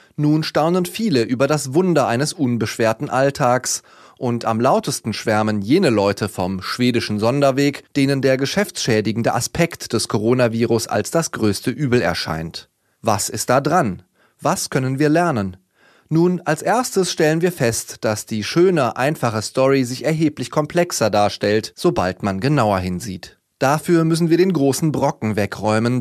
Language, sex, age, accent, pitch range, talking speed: German, male, 30-49, German, 115-155 Hz, 145 wpm